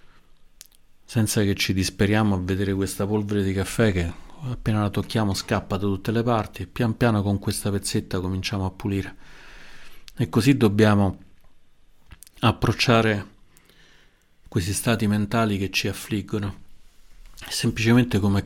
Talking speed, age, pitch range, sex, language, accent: 130 wpm, 40-59, 95-110 Hz, male, Italian, native